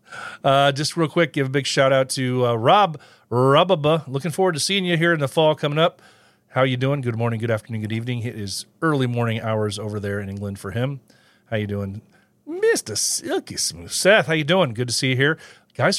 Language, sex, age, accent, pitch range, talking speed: English, male, 40-59, American, 105-135 Hz, 225 wpm